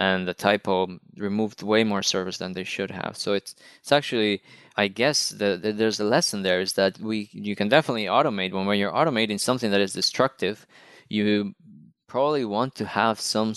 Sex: male